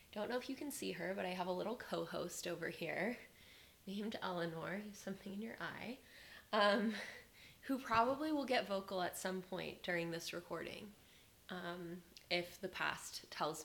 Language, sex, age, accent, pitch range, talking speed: English, female, 20-39, American, 180-215 Hz, 165 wpm